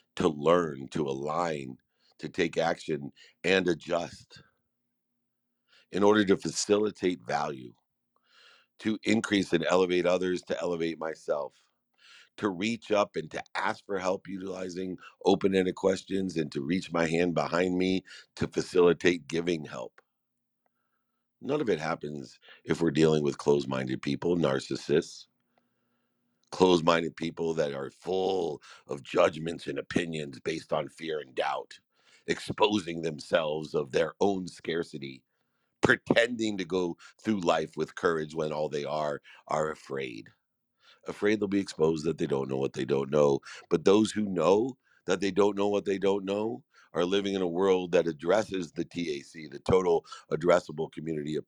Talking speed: 150 wpm